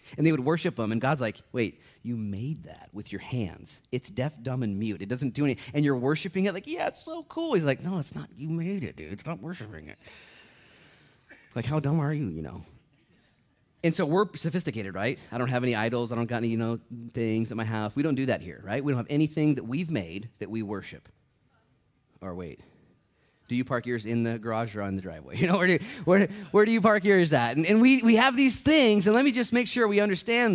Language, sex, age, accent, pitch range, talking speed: English, male, 30-49, American, 110-155 Hz, 250 wpm